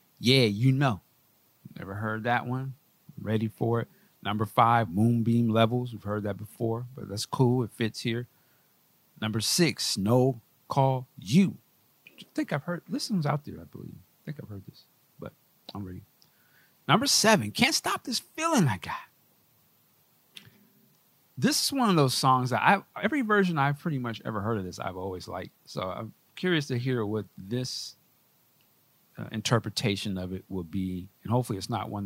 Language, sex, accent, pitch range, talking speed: English, male, American, 100-140 Hz, 180 wpm